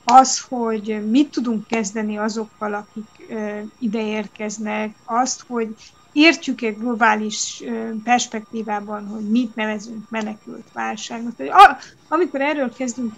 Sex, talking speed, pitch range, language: female, 95 wpm, 215-255 Hz, Hungarian